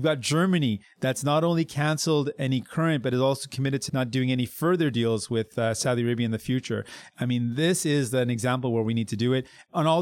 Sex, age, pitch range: male, 30-49, 120-150 Hz